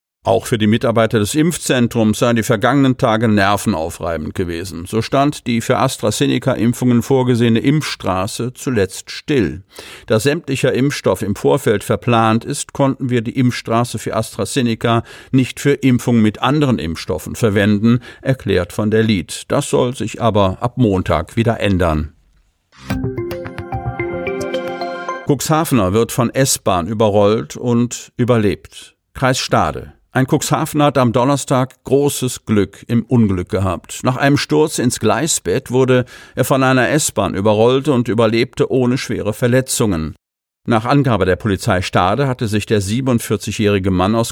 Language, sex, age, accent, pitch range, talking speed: German, male, 50-69, German, 105-130 Hz, 135 wpm